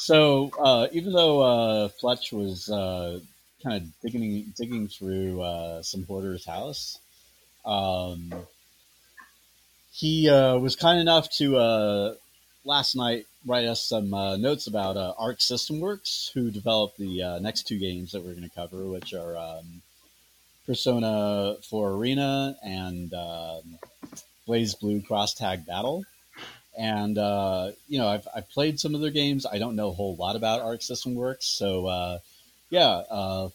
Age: 30-49